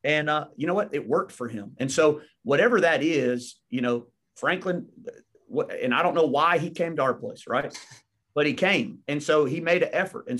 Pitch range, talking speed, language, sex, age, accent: 120-150 Hz, 220 wpm, English, male, 30-49, American